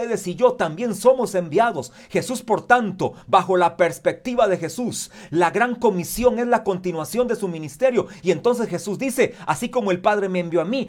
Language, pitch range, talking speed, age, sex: Spanish, 155-210 Hz, 185 wpm, 40-59, male